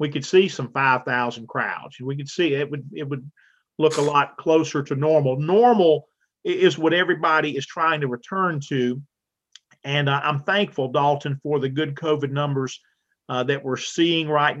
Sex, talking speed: male, 180 wpm